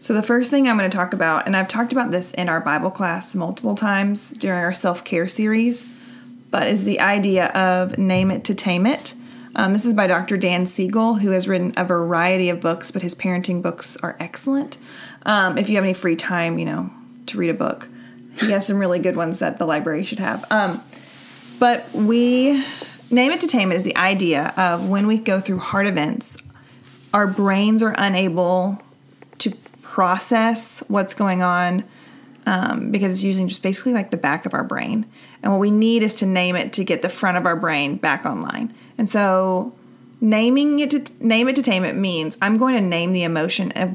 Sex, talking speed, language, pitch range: female, 210 wpm, English, 180-230 Hz